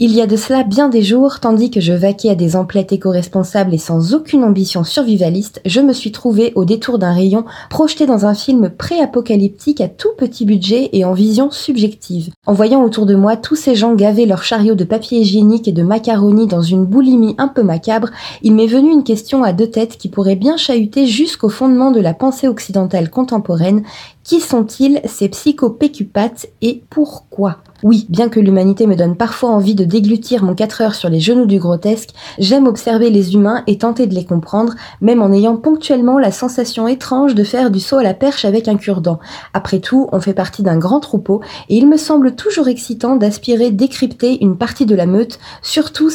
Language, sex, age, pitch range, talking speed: French, female, 20-39, 200-255 Hz, 205 wpm